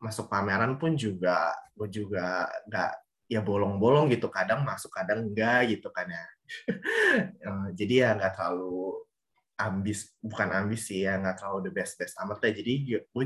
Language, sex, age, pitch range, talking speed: Indonesian, male, 20-39, 100-135 Hz, 145 wpm